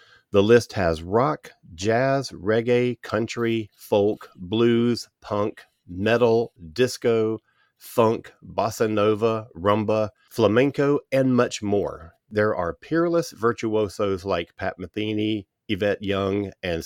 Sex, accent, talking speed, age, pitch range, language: male, American, 105 wpm, 40-59, 95-115 Hz, English